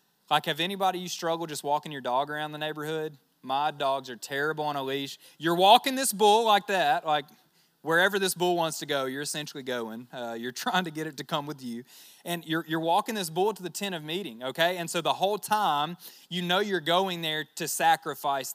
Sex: male